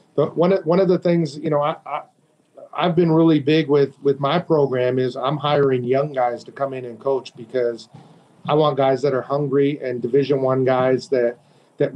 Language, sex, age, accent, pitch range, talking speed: English, male, 40-59, American, 125-145 Hz, 210 wpm